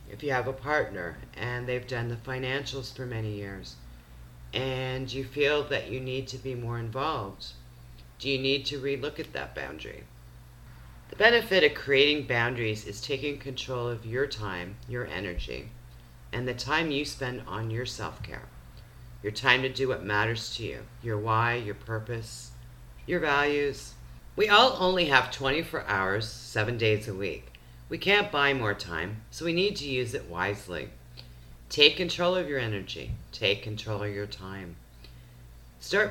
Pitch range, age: 80-135 Hz, 40-59